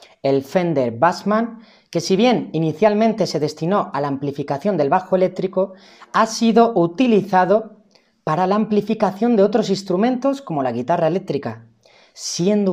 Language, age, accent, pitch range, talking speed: Spanish, 30-49, Spanish, 155-215 Hz, 135 wpm